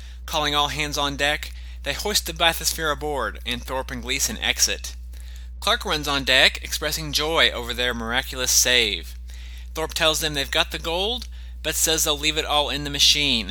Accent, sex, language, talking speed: American, male, English, 180 wpm